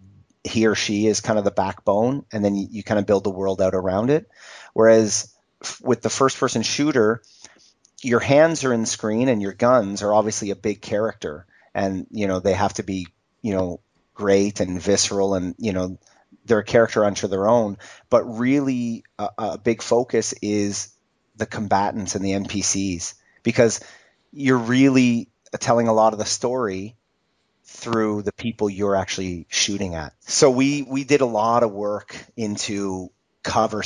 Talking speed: 175 wpm